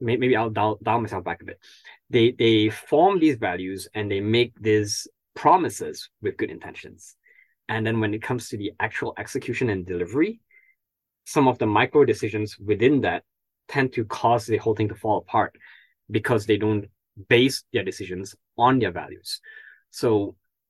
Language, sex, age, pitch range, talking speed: English, male, 20-39, 100-125 Hz, 170 wpm